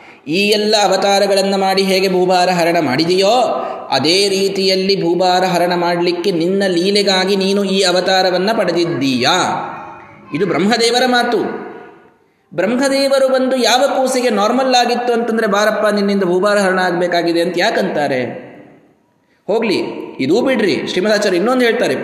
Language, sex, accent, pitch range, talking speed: Kannada, male, native, 165-230 Hz, 115 wpm